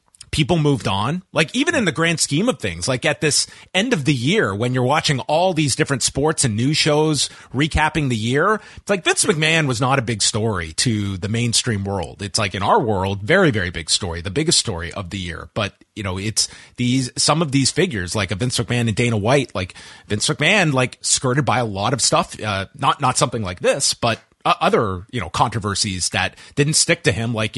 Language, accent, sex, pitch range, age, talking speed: English, American, male, 105-150 Hz, 30-49, 225 wpm